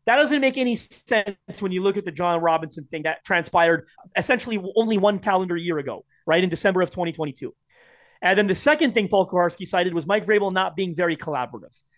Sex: male